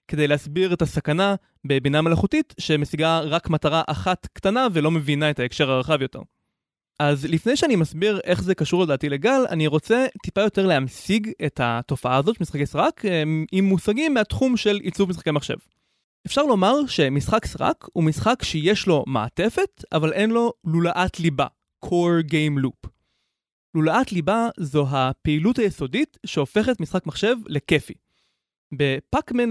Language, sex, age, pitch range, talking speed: Hebrew, male, 20-39, 150-210 Hz, 145 wpm